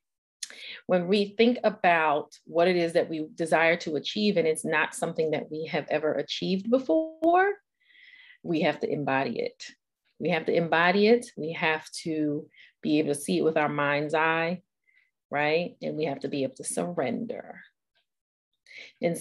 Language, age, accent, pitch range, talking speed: English, 30-49, American, 155-210 Hz, 170 wpm